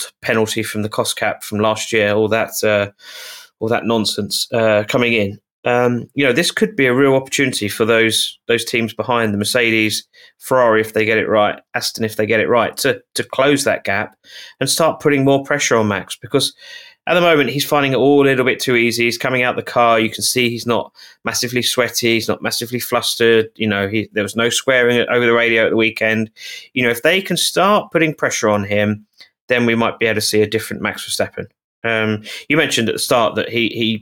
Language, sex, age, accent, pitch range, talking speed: English, male, 20-39, British, 110-135 Hz, 230 wpm